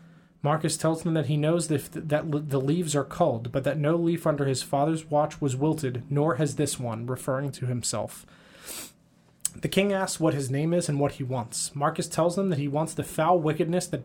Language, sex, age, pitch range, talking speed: English, male, 20-39, 140-170 Hz, 210 wpm